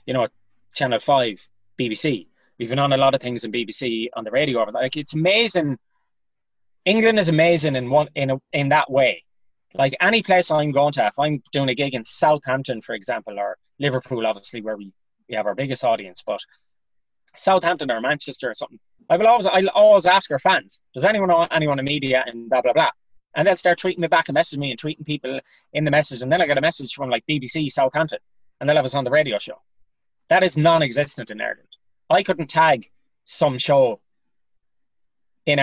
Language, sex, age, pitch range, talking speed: English, male, 20-39, 125-160 Hz, 210 wpm